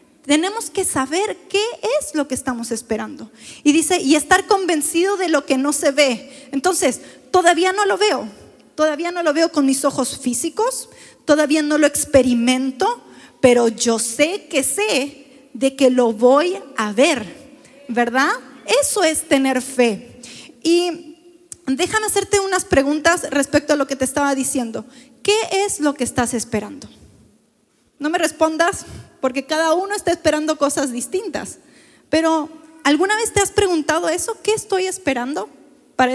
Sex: female